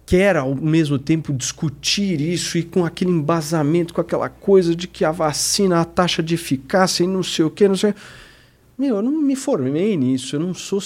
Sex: male